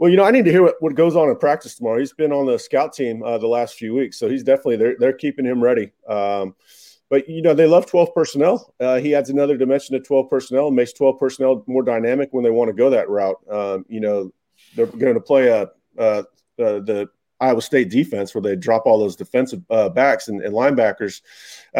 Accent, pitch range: American, 120-145 Hz